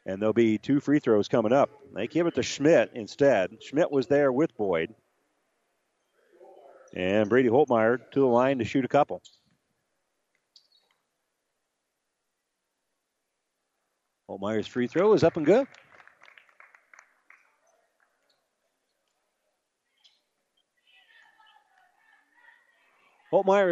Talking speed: 95 wpm